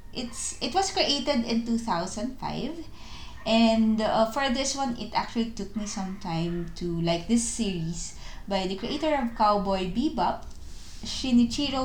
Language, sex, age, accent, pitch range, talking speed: English, female, 20-39, Filipino, 180-235 Hz, 140 wpm